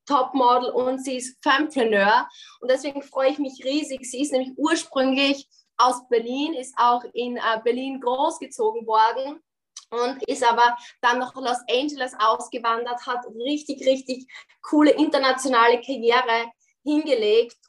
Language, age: German, 20-39